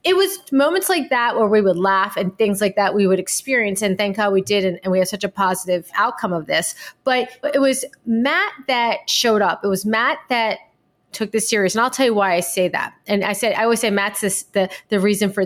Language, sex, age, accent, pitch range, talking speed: English, female, 30-49, American, 190-255 Hz, 255 wpm